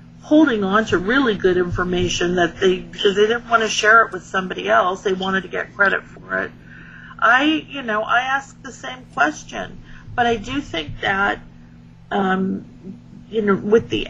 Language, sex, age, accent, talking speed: English, female, 50-69, American, 185 wpm